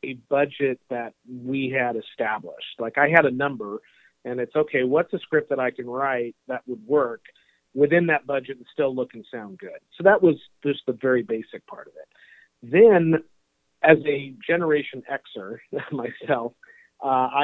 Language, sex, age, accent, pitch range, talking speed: English, male, 40-59, American, 125-155 Hz, 170 wpm